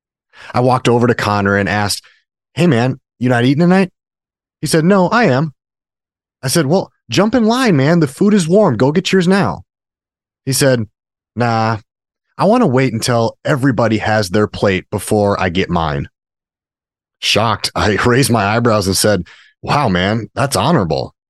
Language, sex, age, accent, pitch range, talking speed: English, male, 30-49, American, 100-135 Hz, 170 wpm